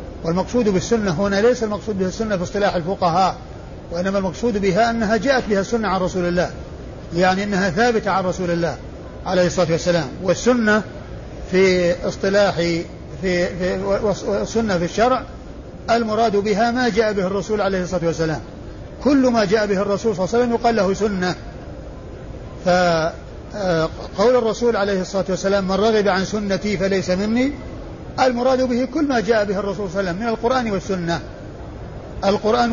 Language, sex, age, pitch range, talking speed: Arabic, male, 50-69, 180-220 Hz, 150 wpm